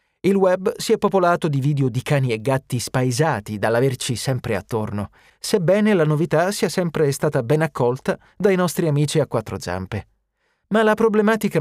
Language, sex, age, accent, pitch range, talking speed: Italian, male, 30-49, native, 110-165 Hz, 165 wpm